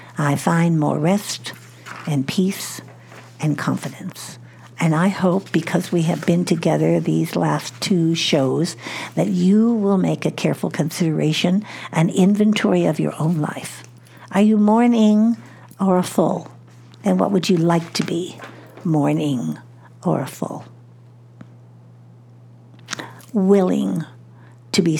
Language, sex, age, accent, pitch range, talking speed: English, female, 60-79, American, 150-190 Hz, 125 wpm